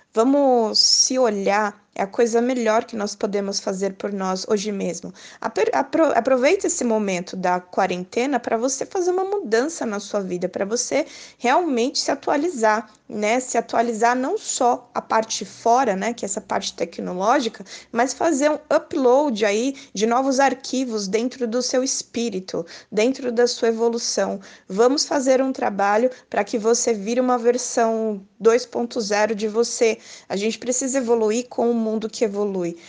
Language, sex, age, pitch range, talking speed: Portuguese, female, 20-39, 210-260 Hz, 160 wpm